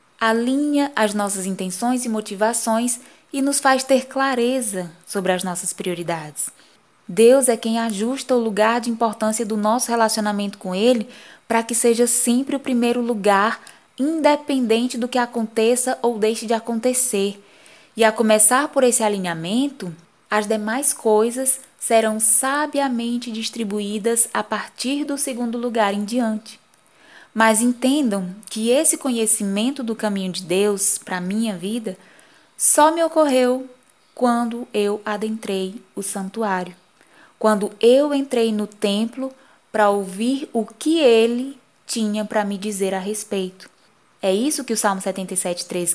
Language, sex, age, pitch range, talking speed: Portuguese, female, 10-29, 205-250 Hz, 140 wpm